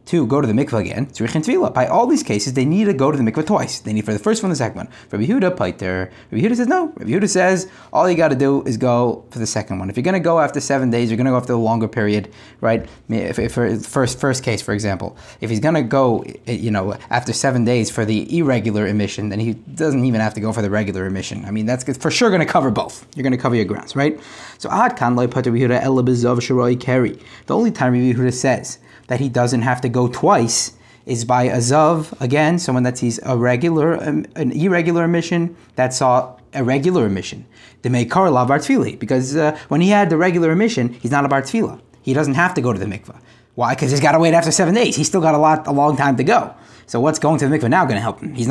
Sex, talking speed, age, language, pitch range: male, 240 wpm, 20-39, English, 115-150 Hz